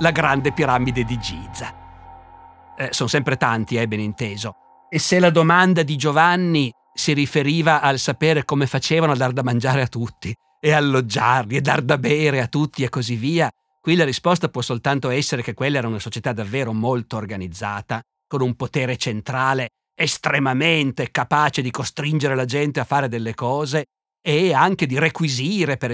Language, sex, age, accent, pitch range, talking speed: Italian, male, 50-69, native, 125-155 Hz, 175 wpm